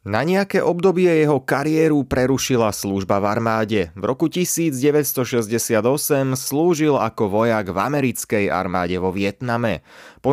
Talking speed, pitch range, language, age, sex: 120 wpm, 100-145 Hz, Slovak, 30-49, male